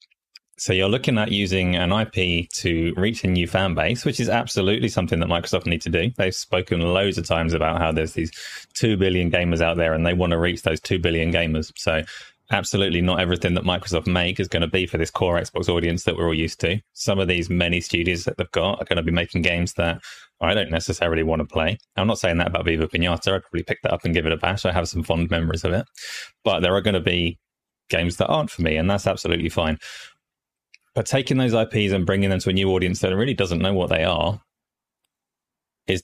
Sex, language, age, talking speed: male, English, 20-39, 245 wpm